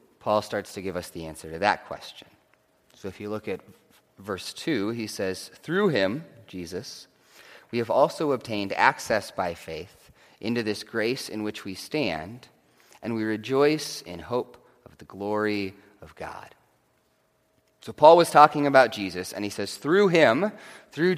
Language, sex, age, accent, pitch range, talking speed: English, male, 30-49, American, 105-145 Hz, 165 wpm